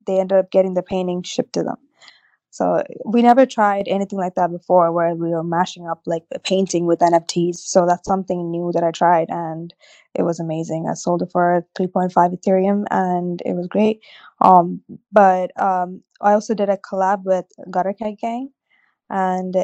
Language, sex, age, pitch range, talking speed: English, female, 20-39, 175-195 Hz, 185 wpm